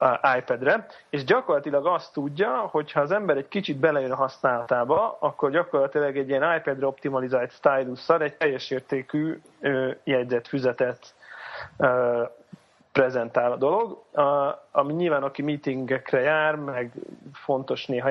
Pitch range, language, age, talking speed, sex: 140-170 Hz, Hungarian, 30-49, 120 wpm, male